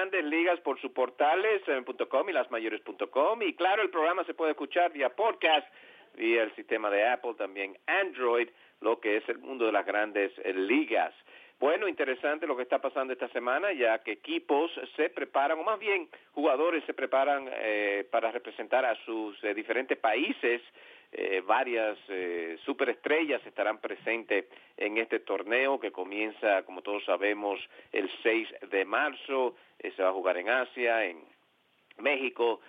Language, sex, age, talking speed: English, male, 50-69, 160 wpm